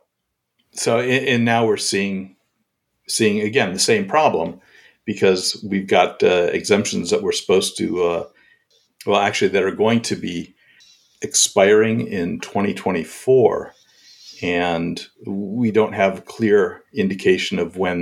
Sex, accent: male, American